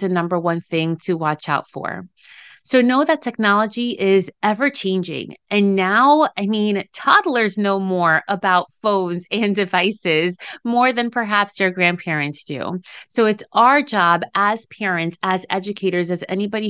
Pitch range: 180-235 Hz